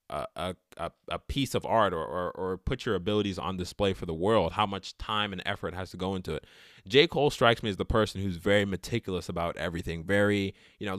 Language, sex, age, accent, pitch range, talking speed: English, male, 20-39, American, 95-120 Hz, 220 wpm